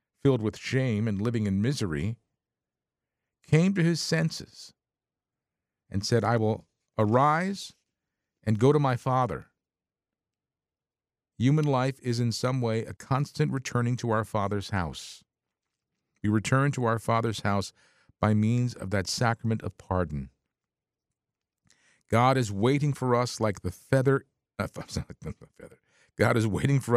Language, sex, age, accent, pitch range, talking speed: English, male, 50-69, American, 100-130 Hz, 130 wpm